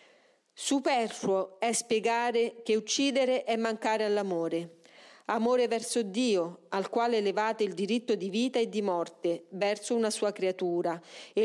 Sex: female